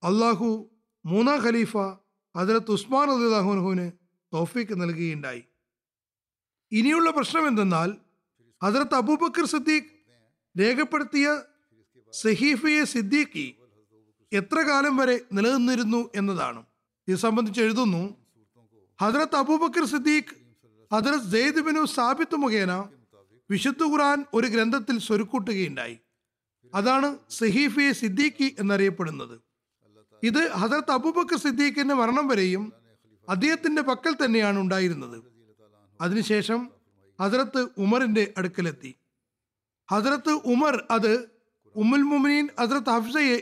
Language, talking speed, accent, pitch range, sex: Malayalam, 80 wpm, native, 180-275 Hz, male